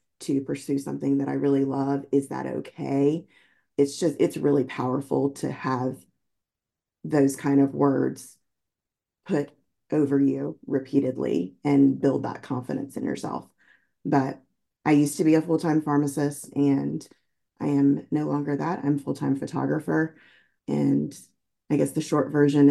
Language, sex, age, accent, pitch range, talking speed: English, female, 30-49, American, 135-145 Hz, 145 wpm